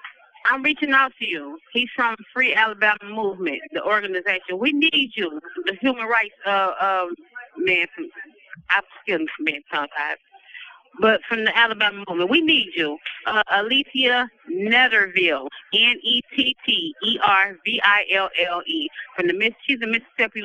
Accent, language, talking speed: American, English, 160 wpm